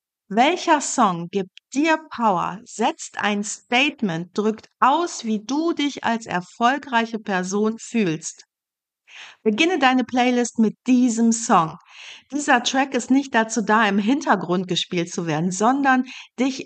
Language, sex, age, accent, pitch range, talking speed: German, female, 50-69, German, 200-260 Hz, 130 wpm